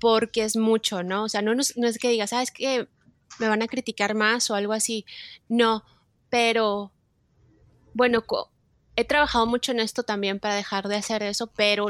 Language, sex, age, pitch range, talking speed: Spanish, female, 20-39, 205-240 Hz, 200 wpm